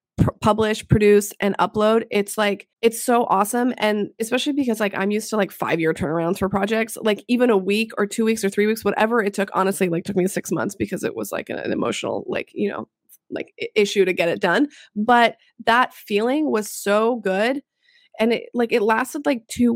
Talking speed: 210 wpm